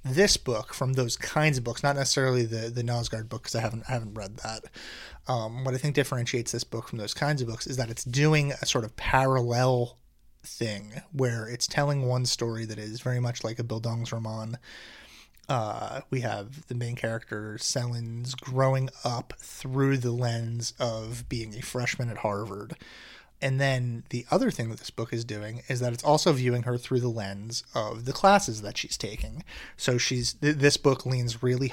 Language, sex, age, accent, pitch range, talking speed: English, male, 30-49, American, 115-135 Hz, 195 wpm